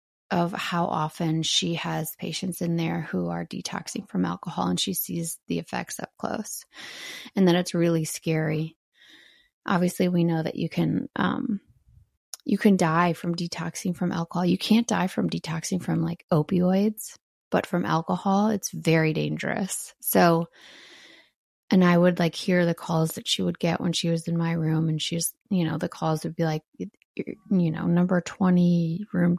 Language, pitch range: English, 165-200 Hz